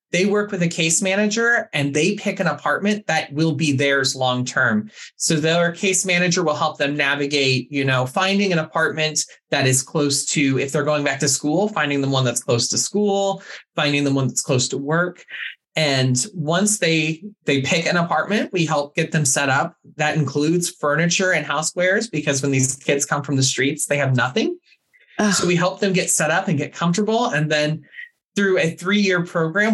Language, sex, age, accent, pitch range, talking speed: English, male, 30-49, American, 140-180 Hz, 200 wpm